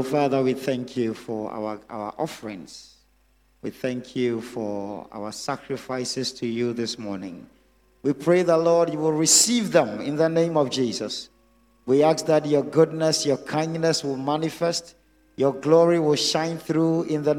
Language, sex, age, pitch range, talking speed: English, male, 50-69, 140-210 Hz, 160 wpm